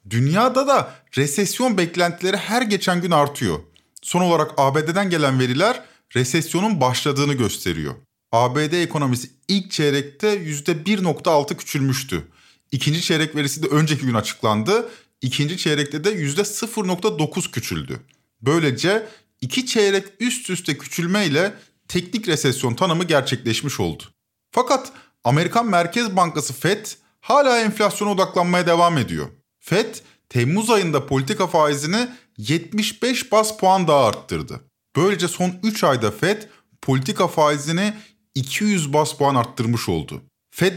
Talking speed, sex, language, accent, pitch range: 115 wpm, male, Turkish, native, 135-200 Hz